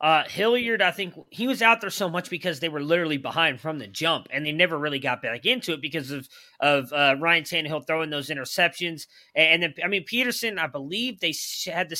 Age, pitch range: 30-49, 140-180 Hz